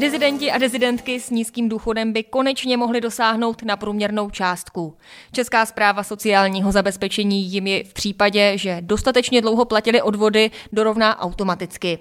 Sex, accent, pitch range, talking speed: female, native, 195-235 Hz, 140 wpm